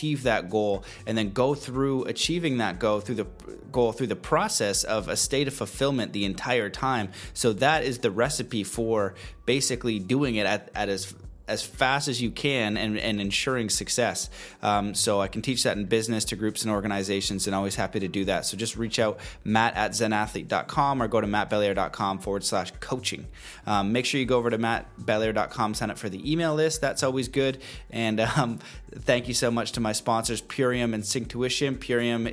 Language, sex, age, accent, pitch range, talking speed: English, male, 20-39, American, 105-120 Hz, 200 wpm